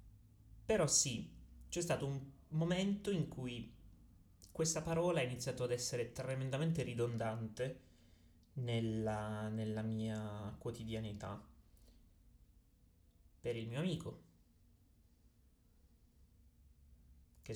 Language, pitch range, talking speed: Italian, 85-120 Hz, 85 wpm